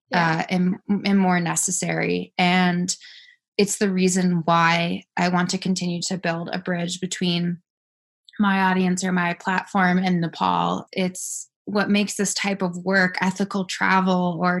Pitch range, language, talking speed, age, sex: 180-205 Hz, English, 150 wpm, 20-39, female